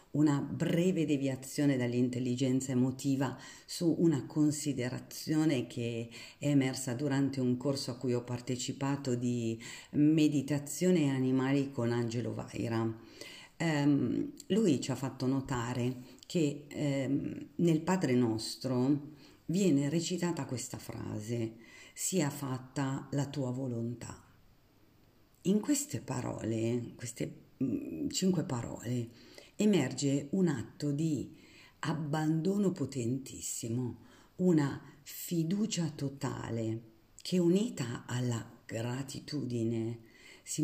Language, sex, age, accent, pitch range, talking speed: Italian, female, 50-69, native, 125-150 Hz, 90 wpm